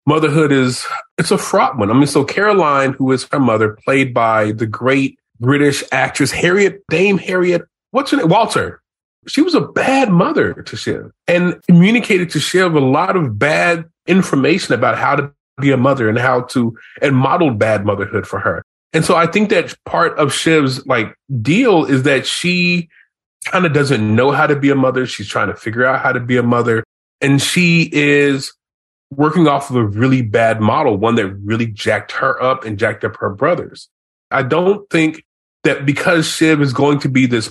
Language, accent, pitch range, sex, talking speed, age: English, American, 125-175 Hz, male, 195 wpm, 20-39